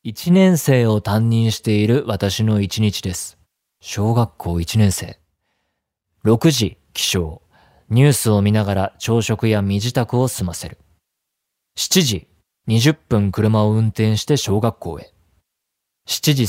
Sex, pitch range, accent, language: male, 95-120 Hz, native, Japanese